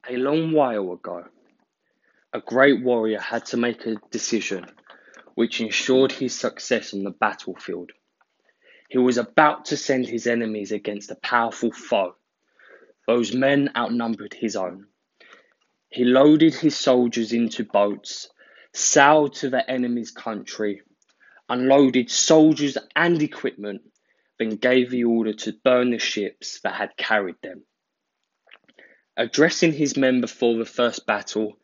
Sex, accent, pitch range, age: male, British, 115-140 Hz, 20-39